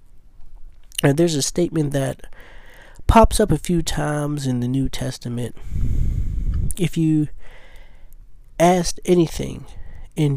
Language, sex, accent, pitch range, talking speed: English, male, American, 115-165 Hz, 110 wpm